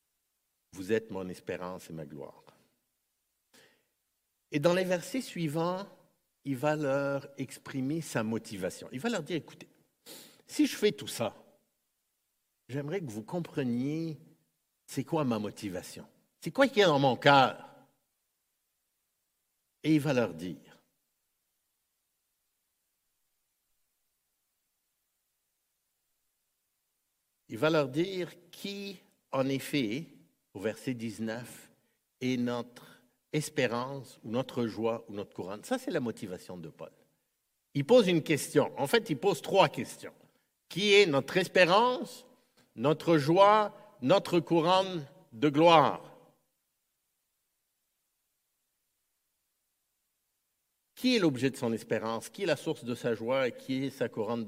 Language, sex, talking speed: French, male, 125 wpm